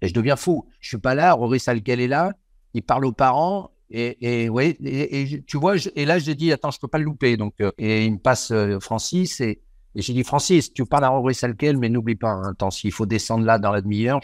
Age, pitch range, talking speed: 50-69, 105-140 Hz, 270 wpm